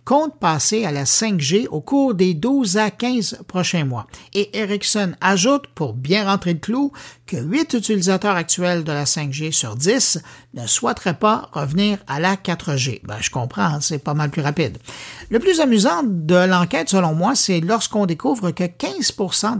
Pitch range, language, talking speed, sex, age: 150-220 Hz, French, 175 wpm, male, 60-79